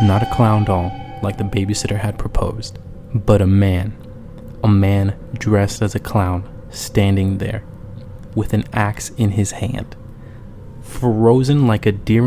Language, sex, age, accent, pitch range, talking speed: English, male, 20-39, American, 95-120 Hz, 145 wpm